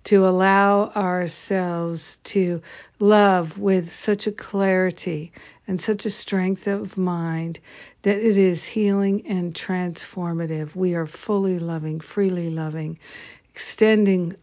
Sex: female